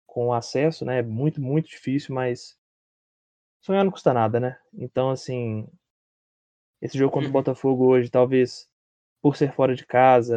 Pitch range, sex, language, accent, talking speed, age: 120-150 Hz, male, Portuguese, Brazilian, 150 wpm, 20-39